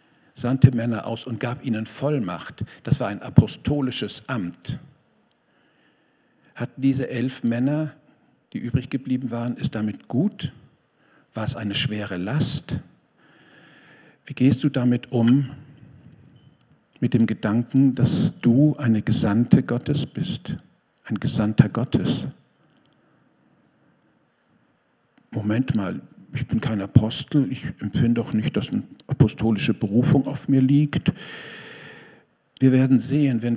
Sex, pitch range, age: male, 115-140 Hz, 50-69